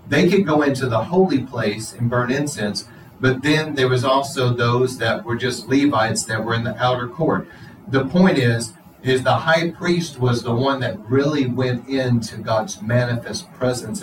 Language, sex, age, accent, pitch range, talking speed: English, male, 40-59, American, 120-150 Hz, 185 wpm